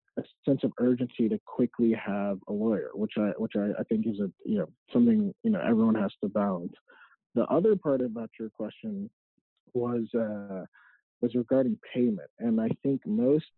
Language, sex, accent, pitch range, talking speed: English, male, American, 110-175 Hz, 185 wpm